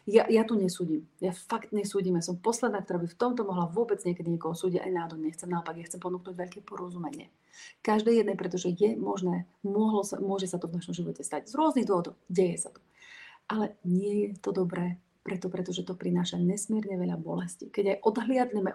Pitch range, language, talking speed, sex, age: 175-215 Hz, Slovak, 195 wpm, female, 30-49